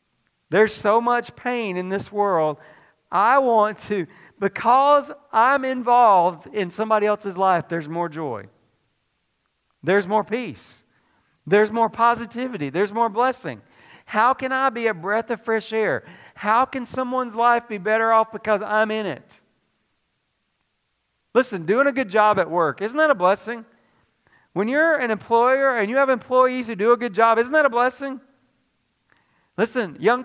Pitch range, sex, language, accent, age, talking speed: 195-260 Hz, male, English, American, 40-59, 155 wpm